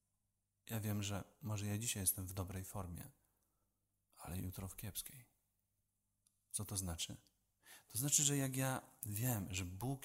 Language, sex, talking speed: Polish, male, 150 wpm